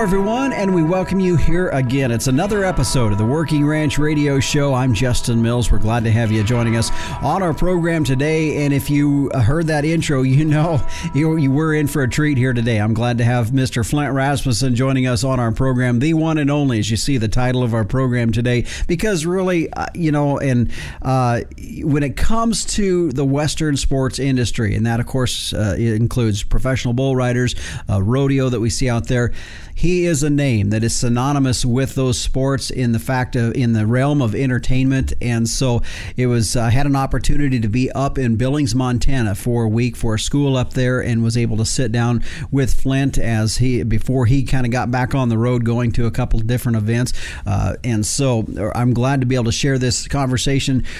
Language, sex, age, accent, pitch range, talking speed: English, male, 50-69, American, 120-140 Hz, 215 wpm